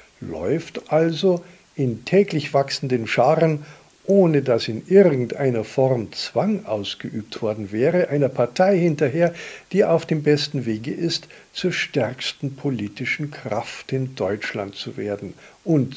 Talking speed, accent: 125 wpm, German